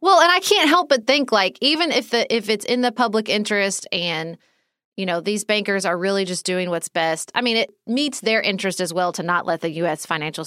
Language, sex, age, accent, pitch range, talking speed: English, female, 30-49, American, 195-250 Hz, 240 wpm